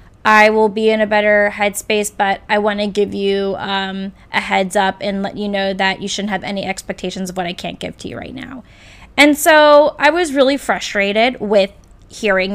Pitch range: 205-255 Hz